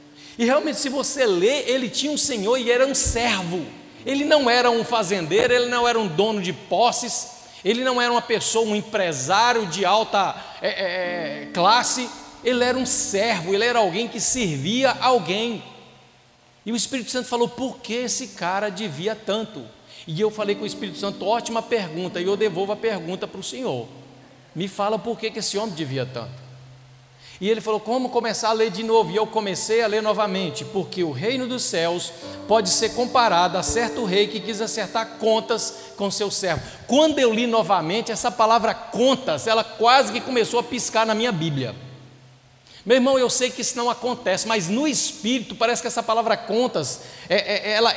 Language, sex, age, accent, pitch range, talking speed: Portuguese, male, 60-79, Brazilian, 195-240 Hz, 185 wpm